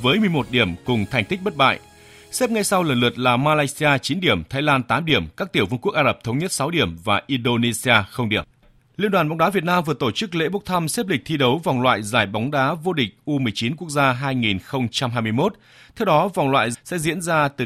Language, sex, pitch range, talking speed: Vietnamese, male, 115-155 Hz, 240 wpm